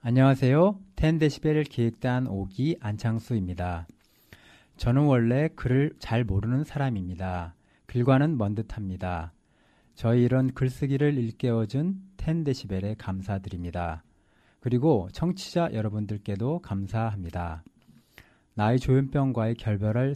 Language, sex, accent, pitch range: Korean, male, native, 100-130 Hz